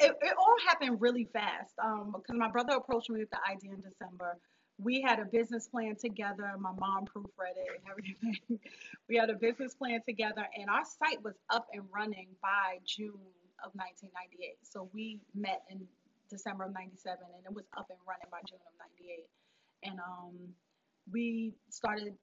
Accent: American